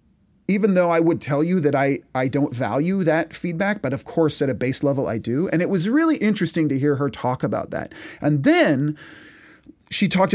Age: 30-49